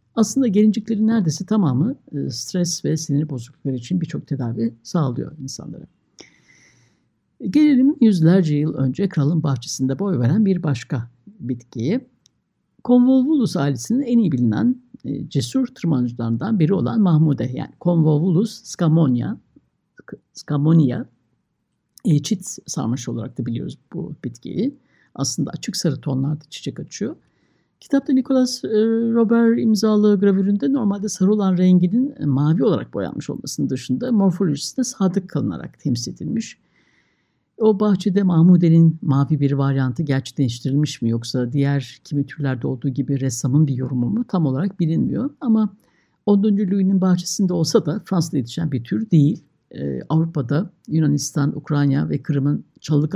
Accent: native